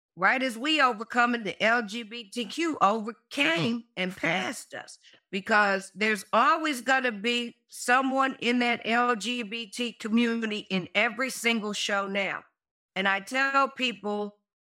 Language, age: English, 50-69